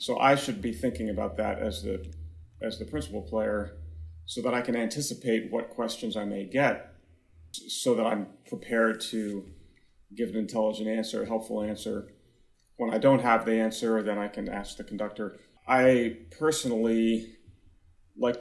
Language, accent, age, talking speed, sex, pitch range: English, American, 30-49, 165 wpm, male, 95-115 Hz